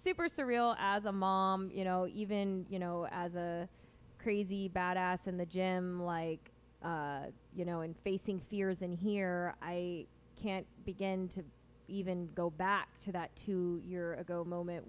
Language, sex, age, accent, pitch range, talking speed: English, female, 20-39, American, 170-200 Hz, 155 wpm